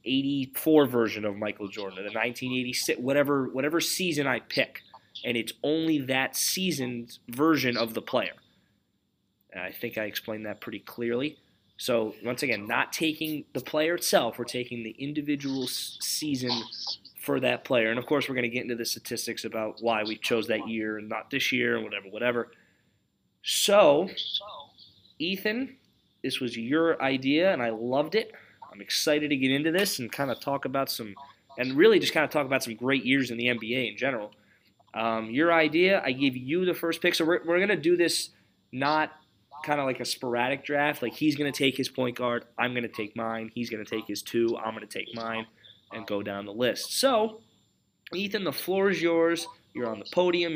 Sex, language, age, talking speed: male, English, 20-39, 200 wpm